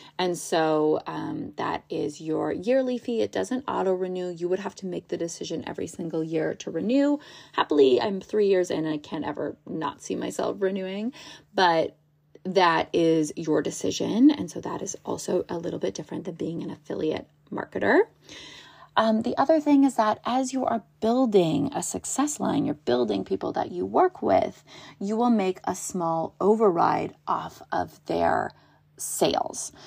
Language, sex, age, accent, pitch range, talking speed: English, female, 30-49, American, 175-250 Hz, 175 wpm